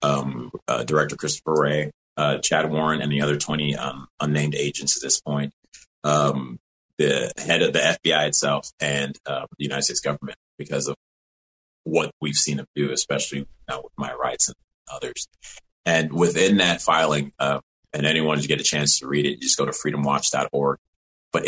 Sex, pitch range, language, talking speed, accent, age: male, 70-80 Hz, English, 180 wpm, American, 30-49